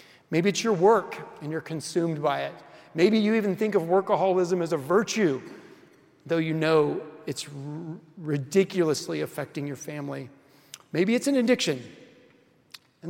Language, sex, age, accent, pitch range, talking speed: English, male, 40-59, American, 155-195 Hz, 140 wpm